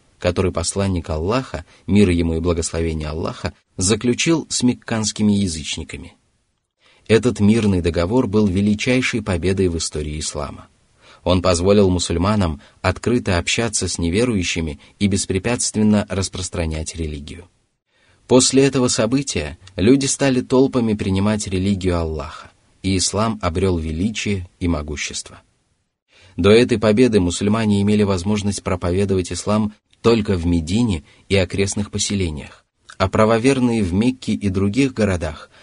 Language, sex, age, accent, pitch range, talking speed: Russian, male, 30-49, native, 85-105 Hz, 115 wpm